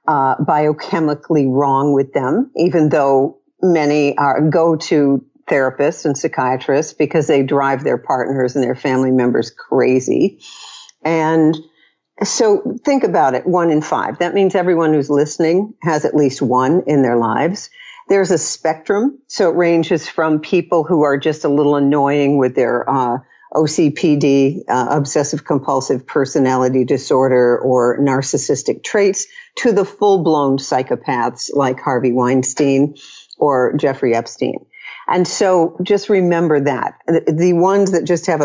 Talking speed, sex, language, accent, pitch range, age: 140 wpm, female, English, American, 140-175 Hz, 50-69